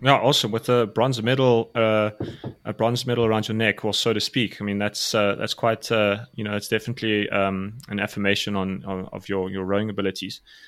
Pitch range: 100-115 Hz